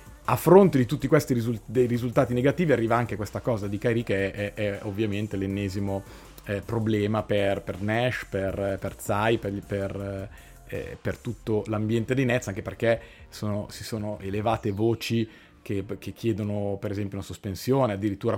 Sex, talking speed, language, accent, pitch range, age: male, 170 wpm, Italian, native, 100-120 Hz, 30-49